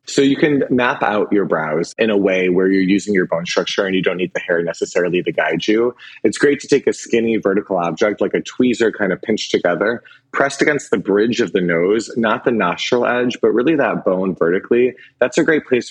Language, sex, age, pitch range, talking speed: English, male, 30-49, 95-125 Hz, 230 wpm